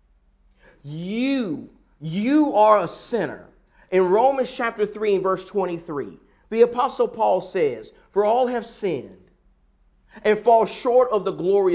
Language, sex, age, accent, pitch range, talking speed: English, male, 40-59, American, 185-250 Hz, 135 wpm